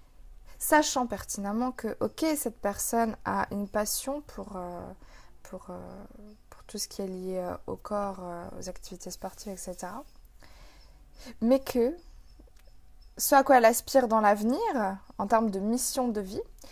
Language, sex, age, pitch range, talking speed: French, female, 20-39, 205-250 Hz, 145 wpm